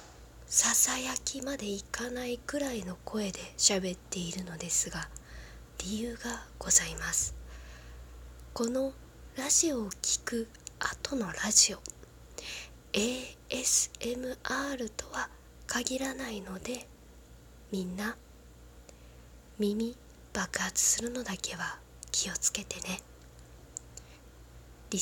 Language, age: Japanese, 20-39